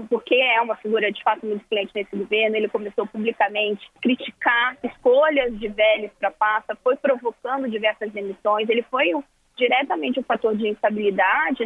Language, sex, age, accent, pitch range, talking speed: Portuguese, female, 20-39, Brazilian, 215-260 Hz, 170 wpm